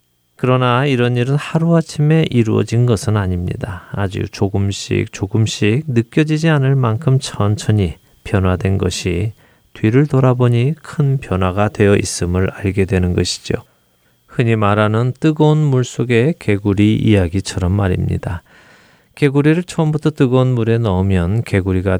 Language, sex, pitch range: Korean, male, 95-125 Hz